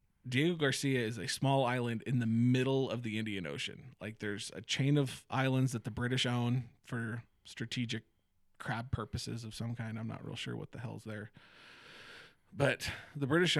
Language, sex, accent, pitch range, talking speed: English, male, American, 110-135 Hz, 180 wpm